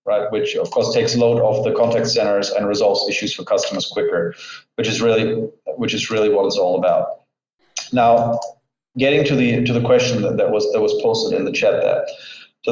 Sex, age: male, 30-49